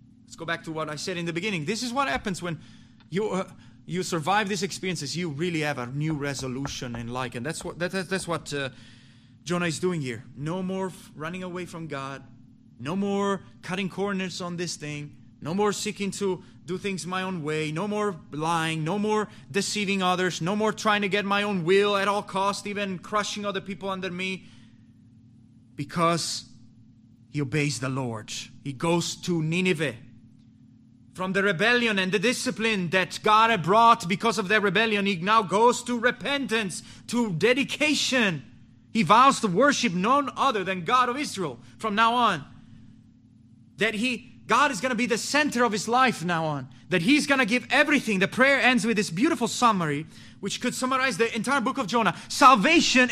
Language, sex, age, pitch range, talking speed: English, male, 30-49, 140-220 Hz, 185 wpm